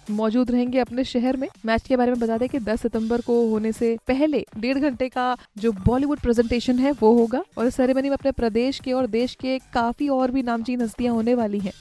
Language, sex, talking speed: Hindi, female, 230 wpm